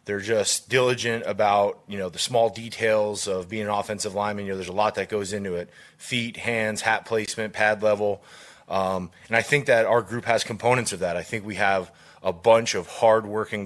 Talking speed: 210 wpm